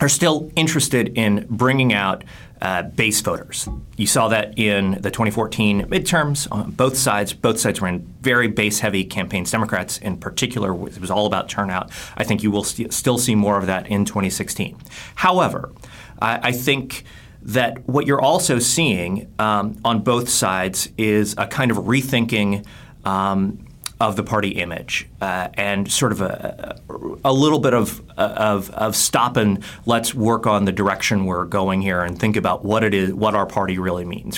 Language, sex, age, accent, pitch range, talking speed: English, male, 30-49, American, 100-125 Hz, 175 wpm